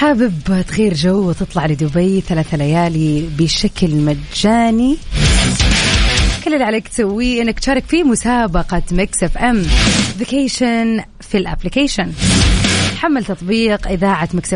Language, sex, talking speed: Arabic, female, 110 wpm